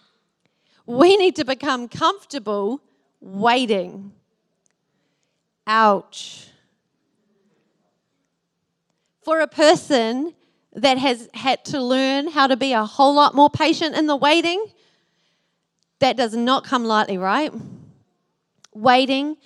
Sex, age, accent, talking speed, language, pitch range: female, 30-49, Australian, 100 wpm, English, 220-280 Hz